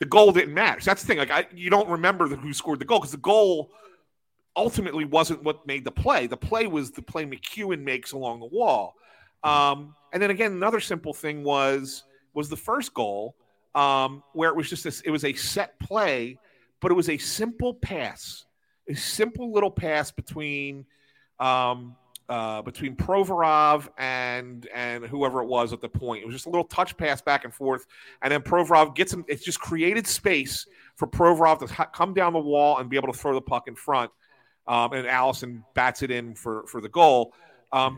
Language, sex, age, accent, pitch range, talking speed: English, male, 40-59, American, 130-175 Hz, 205 wpm